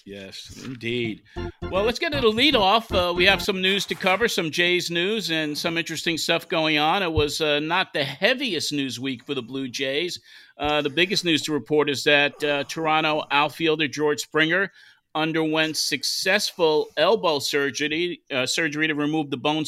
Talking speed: 185 wpm